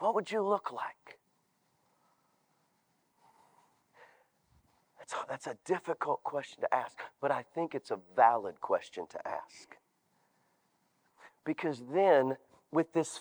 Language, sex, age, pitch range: English, male, 40-59, 160-240 Hz